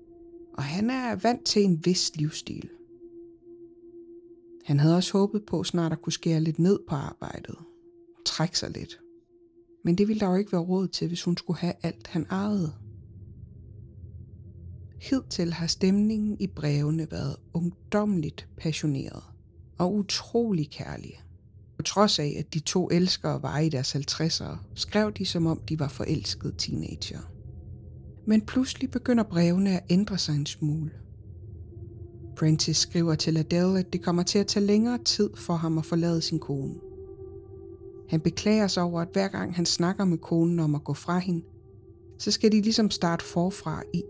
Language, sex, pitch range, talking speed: Danish, female, 150-210 Hz, 165 wpm